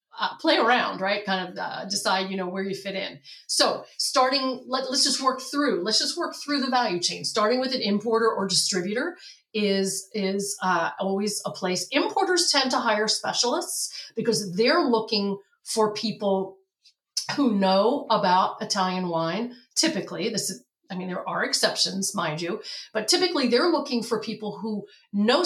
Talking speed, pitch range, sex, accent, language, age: 170 wpm, 185-245 Hz, female, American, English, 40-59